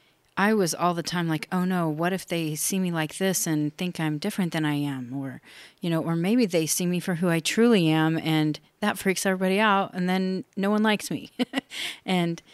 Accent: American